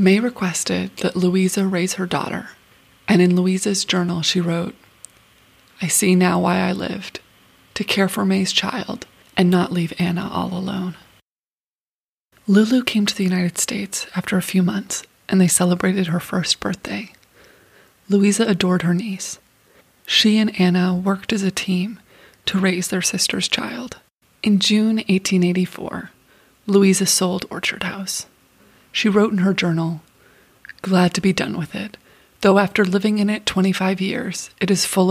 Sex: female